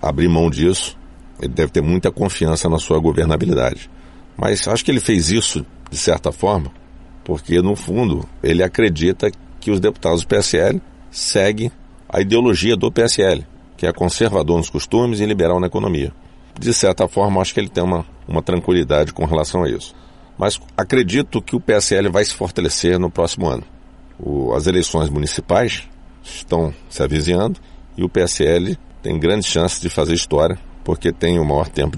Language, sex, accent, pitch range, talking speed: Portuguese, male, Brazilian, 75-90 Hz, 165 wpm